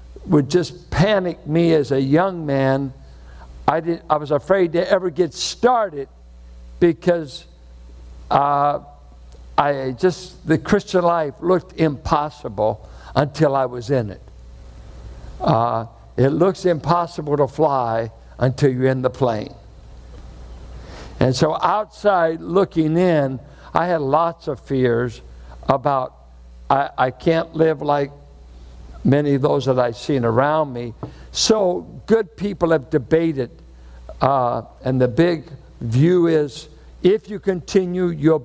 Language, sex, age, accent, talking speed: English, male, 60-79, American, 125 wpm